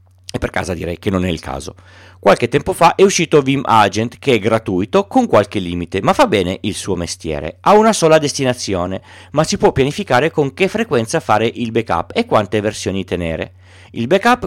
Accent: native